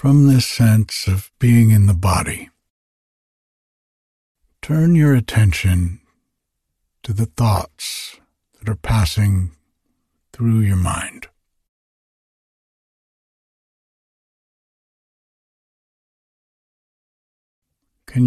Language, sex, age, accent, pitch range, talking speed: English, male, 60-79, American, 80-120 Hz, 70 wpm